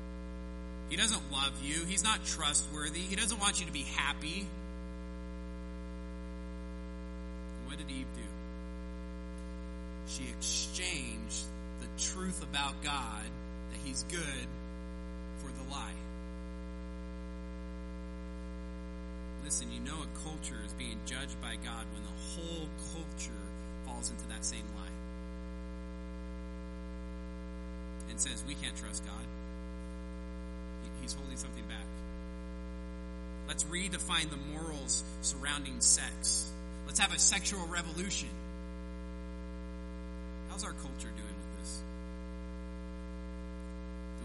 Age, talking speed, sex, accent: 30-49, 105 wpm, male, American